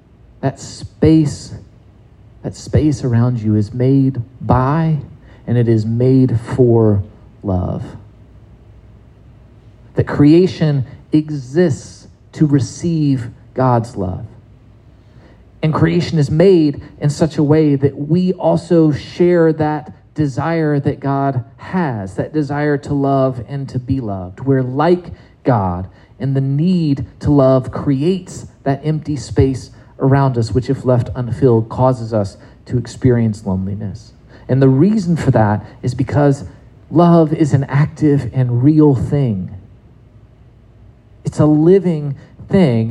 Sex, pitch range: male, 115-155 Hz